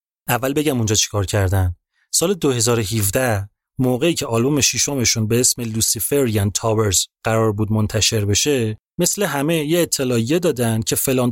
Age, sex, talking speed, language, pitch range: 30-49, male, 140 wpm, Persian, 105-145 Hz